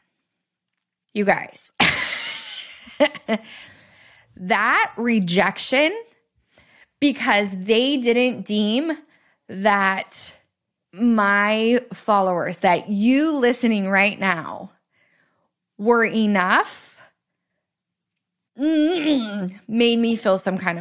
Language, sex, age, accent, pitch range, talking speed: English, female, 20-39, American, 190-230 Hz, 65 wpm